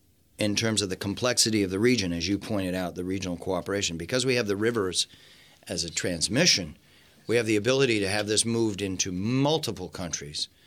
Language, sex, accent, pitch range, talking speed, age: English, male, American, 90-115 Hz, 190 wpm, 40-59